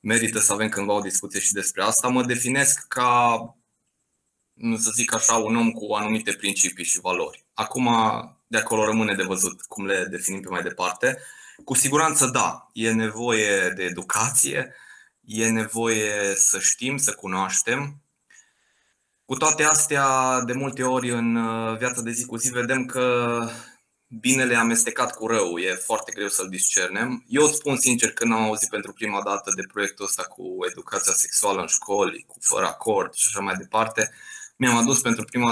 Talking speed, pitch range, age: 170 wpm, 105-125 Hz, 20-39